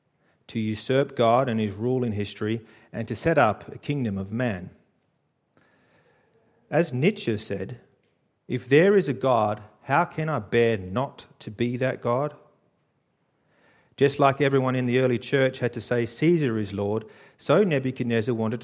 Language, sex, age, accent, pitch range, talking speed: English, male, 40-59, Australian, 110-140 Hz, 160 wpm